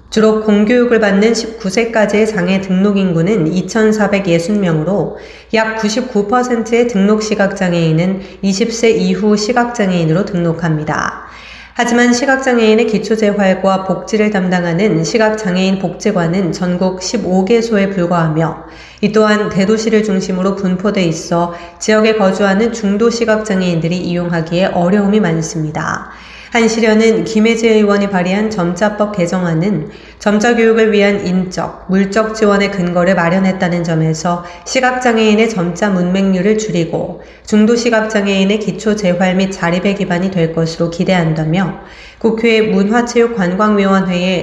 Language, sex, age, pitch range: Korean, female, 30-49, 180-220 Hz